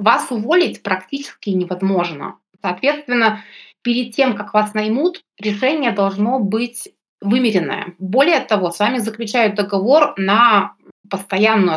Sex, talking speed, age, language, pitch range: female, 110 wpm, 20-39, Russian, 185-230 Hz